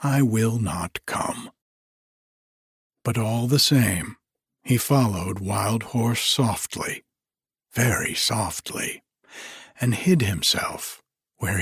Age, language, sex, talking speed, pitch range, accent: 60-79, English, male, 100 wpm, 110-145 Hz, American